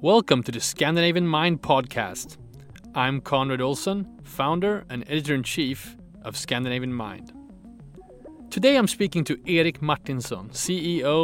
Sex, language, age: male, English, 30-49